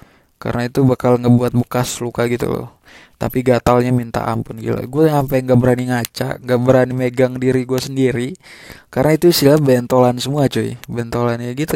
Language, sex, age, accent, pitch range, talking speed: Indonesian, male, 20-39, native, 120-130 Hz, 165 wpm